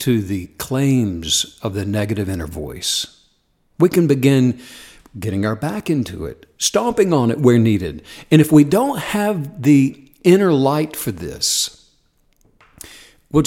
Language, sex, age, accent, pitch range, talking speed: English, male, 60-79, American, 120-155 Hz, 145 wpm